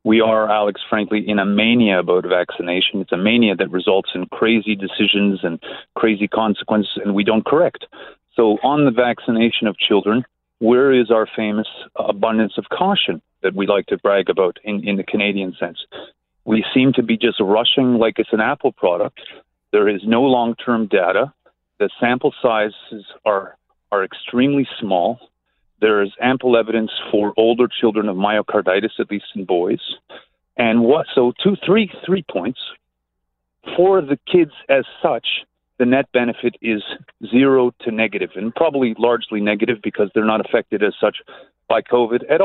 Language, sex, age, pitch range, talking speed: English, male, 30-49, 105-125 Hz, 165 wpm